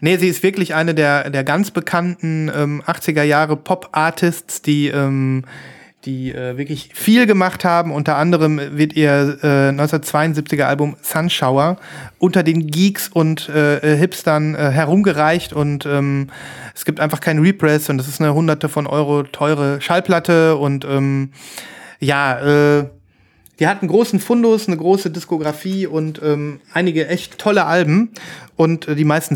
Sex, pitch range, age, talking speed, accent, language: male, 145-180 Hz, 30-49, 145 wpm, German, German